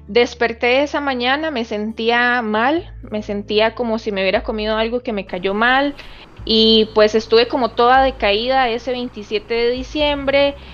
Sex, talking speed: female, 155 wpm